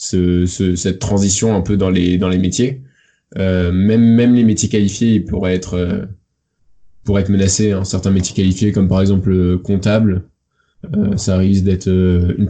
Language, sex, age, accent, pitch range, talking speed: French, male, 20-39, French, 95-110 Hz, 180 wpm